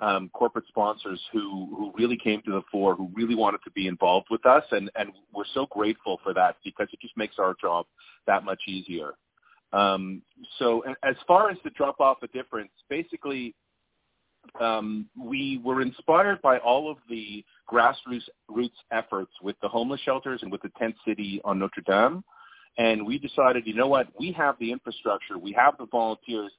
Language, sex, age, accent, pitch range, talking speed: English, male, 40-59, American, 105-130 Hz, 185 wpm